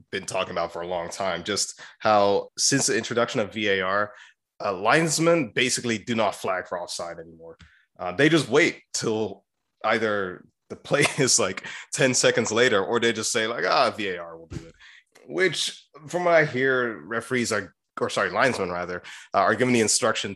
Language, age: English, 30-49